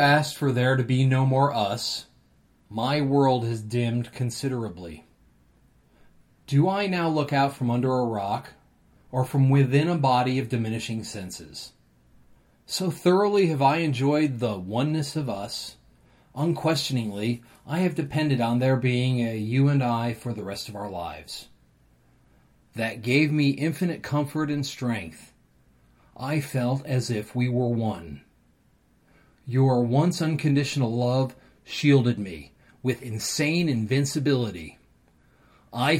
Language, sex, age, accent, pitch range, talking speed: English, male, 30-49, American, 115-150 Hz, 135 wpm